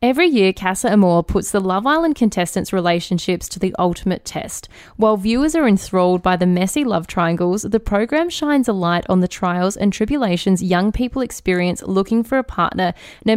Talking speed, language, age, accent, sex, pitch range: 185 wpm, English, 10-29, Australian, female, 180-215 Hz